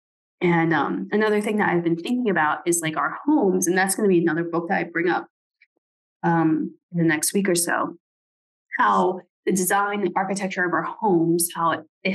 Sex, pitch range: female, 170-210 Hz